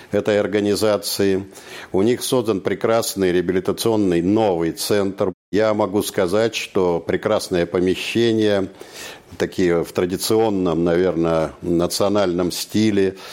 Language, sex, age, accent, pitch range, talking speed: Russian, male, 60-79, native, 90-115 Hz, 95 wpm